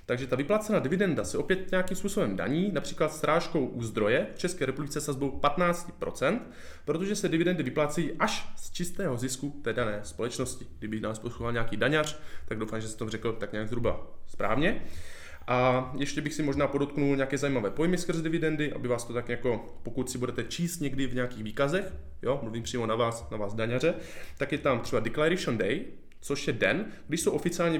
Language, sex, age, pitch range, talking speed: Czech, male, 20-39, 120-160 Hz, 190 wpm